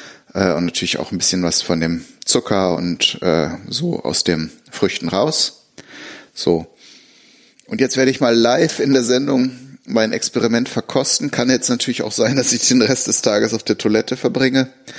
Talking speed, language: 175 wpm, German